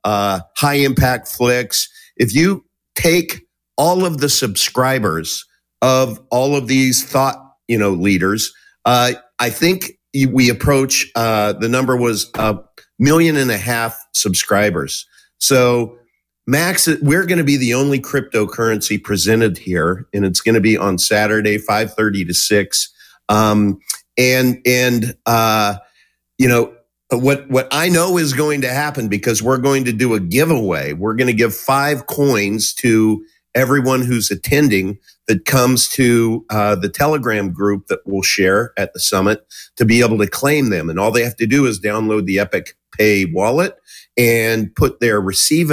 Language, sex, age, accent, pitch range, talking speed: English, male, 50-69, American, 105-135 Hz, 160 wpm